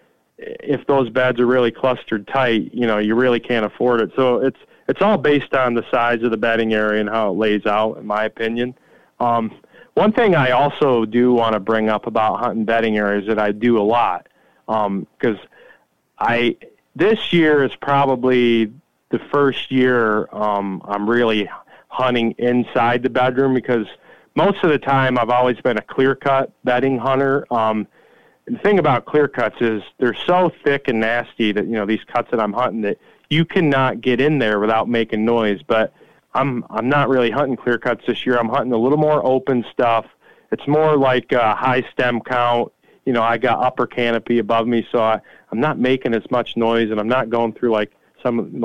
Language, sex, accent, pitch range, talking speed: English, male, American, 110-135 Hz, 200 wpm